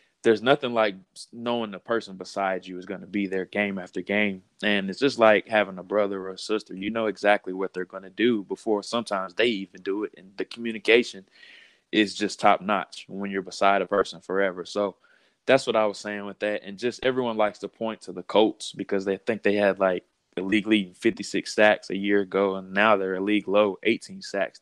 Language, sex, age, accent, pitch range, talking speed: English, male, 20-39, American, 95-110 Hz, 220 wpm